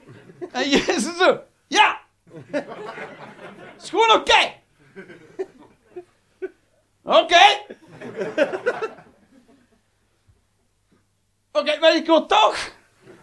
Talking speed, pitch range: 75 wpm, 315-415 Hz